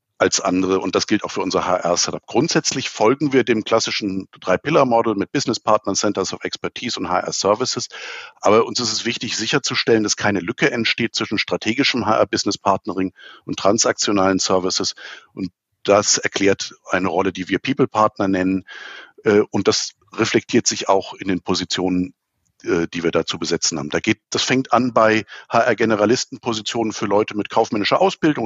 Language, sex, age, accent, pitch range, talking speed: German, male, 50-69, German, 100-115 Hz, 165 wpm